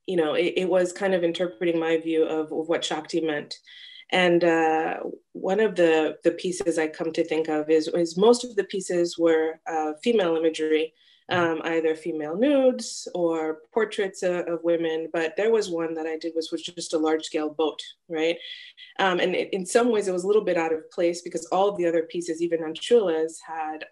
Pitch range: 160-185 Hz